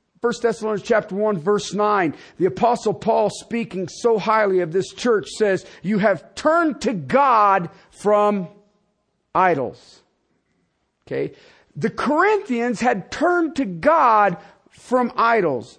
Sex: male